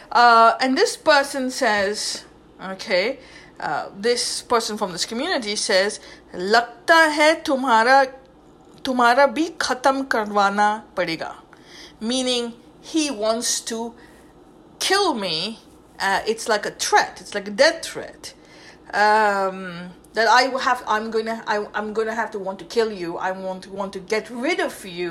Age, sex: 50-69, female